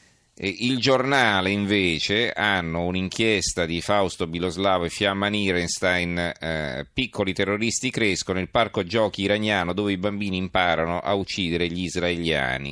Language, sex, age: Italian, male, 40-59